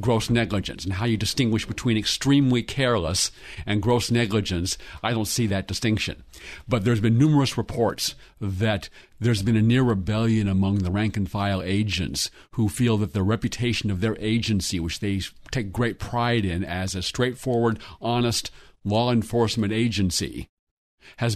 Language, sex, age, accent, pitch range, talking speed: English, male, 50-69, American, 100-120 Hz, 150 wpm